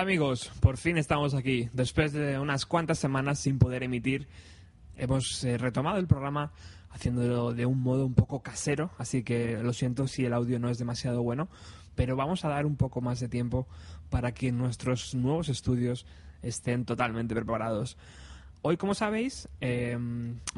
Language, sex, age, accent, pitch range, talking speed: Spanish, male, 20-39, Spanish, 120-145 Hz, 170 wpm